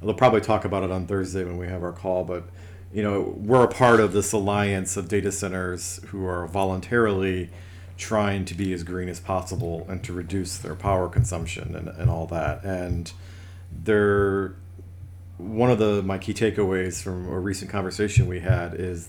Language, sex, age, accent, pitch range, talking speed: English, male, 40-59, American, 90-105 Hz, 190 wpm